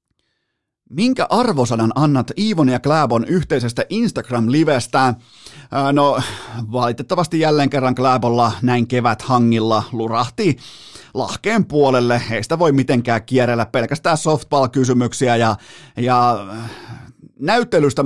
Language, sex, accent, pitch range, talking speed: Finnish, male, native, 120-150 Hz, 95 wpm